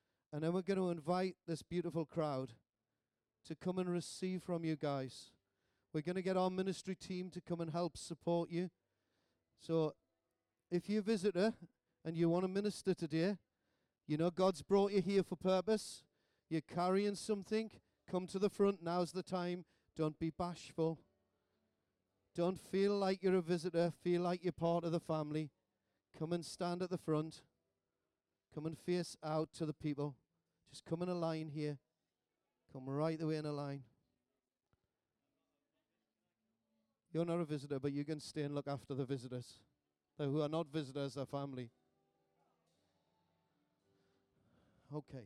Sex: male